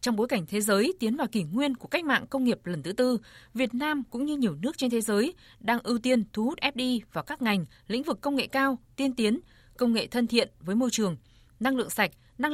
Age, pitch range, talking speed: 20-39, 195-260 Hz, 255 wpm